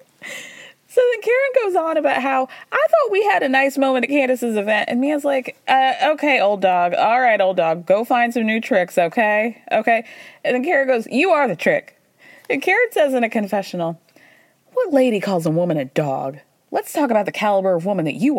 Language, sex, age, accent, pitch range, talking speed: English, female, 20-39, American, 205-300 Hz, 210 wpm